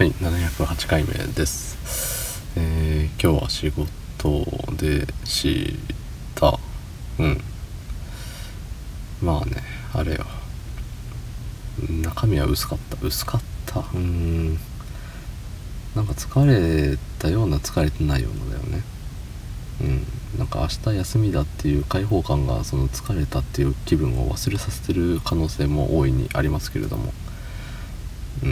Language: Japanese